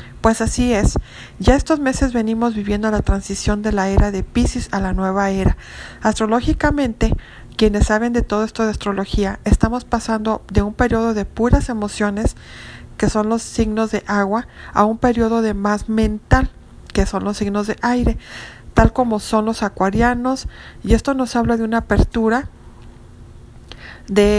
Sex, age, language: female, 40-59, Spanish